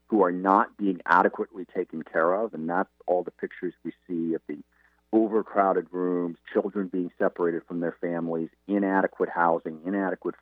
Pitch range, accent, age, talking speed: 75-100 Hz, American, 50-69, 160 wpm